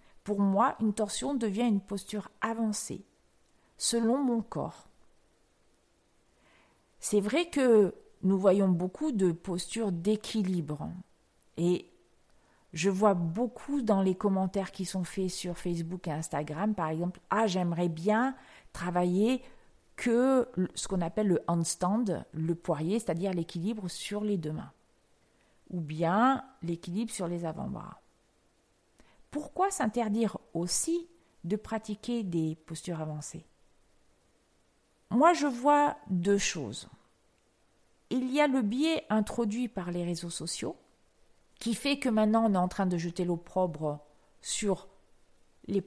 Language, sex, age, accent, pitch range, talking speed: French, female, 40-59, French, 175-225 Hz, 125 wpm